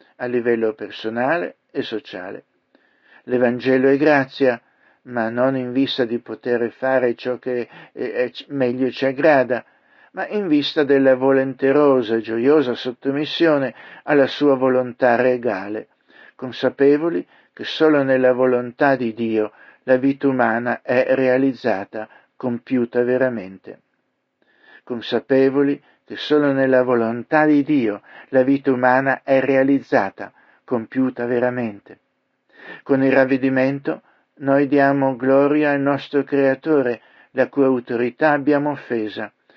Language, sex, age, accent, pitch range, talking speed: Italian, male, 60-79, native, 120-140 Hz, 115 wpm